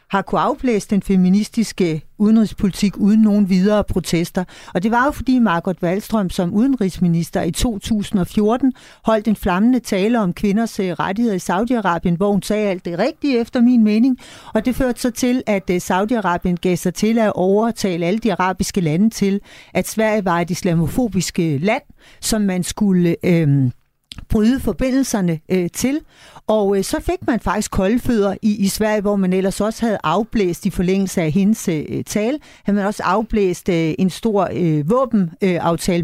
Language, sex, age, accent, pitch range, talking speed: Danish, female, 60-79, native, 180-220 Hz, 170 wpm